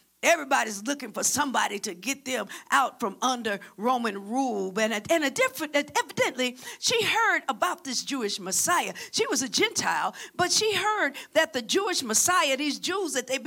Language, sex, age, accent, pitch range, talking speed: English, female, 50-69, American, 250-345 Hz, 175 wpm